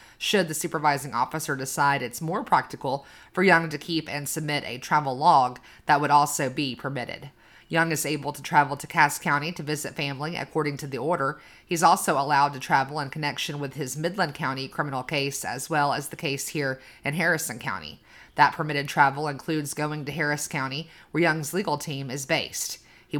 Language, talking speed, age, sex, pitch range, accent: English, 190 wpm, 30-49, female, 140-165 Hz, American